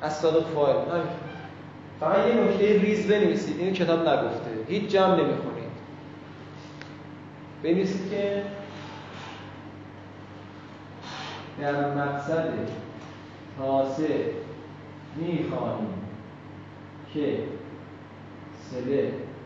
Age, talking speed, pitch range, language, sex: 40-59, 70 wpm, 125-160 Hz, Persian, male